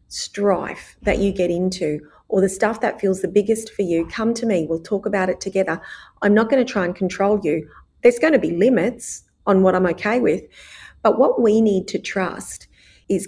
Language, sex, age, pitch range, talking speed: English, female, 30-49, 170-210 Hz, 210 wpm